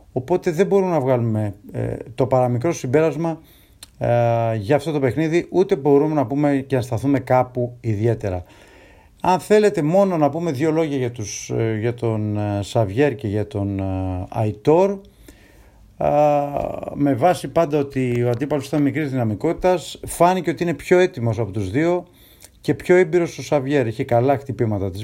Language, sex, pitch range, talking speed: Greek, male, 110-150 Hz, 165 wpm